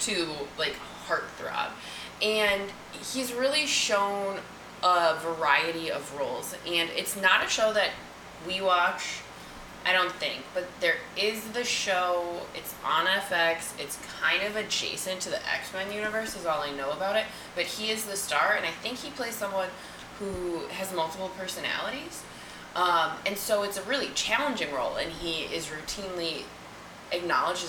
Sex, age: female, 20-39